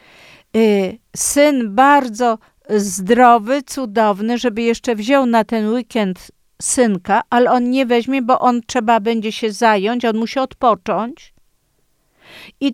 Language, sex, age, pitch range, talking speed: Polish, female, 50-69, 205-255 Hz, 120 wpm